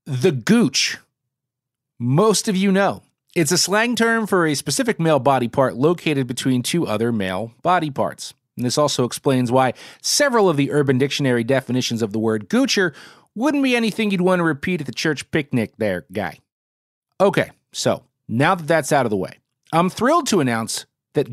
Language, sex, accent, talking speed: English, male, American, 185 wpm